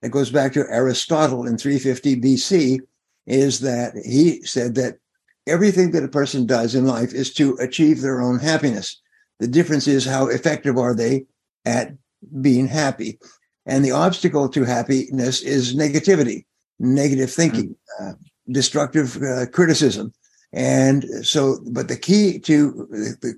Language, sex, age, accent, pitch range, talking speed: English, male, 60-79, American, 130-155 Hz, 145 wpm